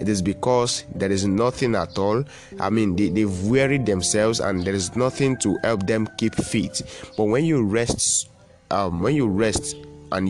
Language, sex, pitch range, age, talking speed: English, male, 95-115 Hz, 30-49, 185 wpm